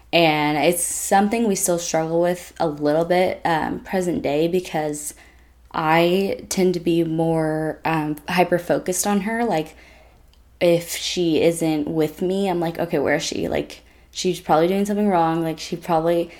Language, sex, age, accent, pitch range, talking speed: English, female, 10-29, American, 155-180 Hz, 160 wpm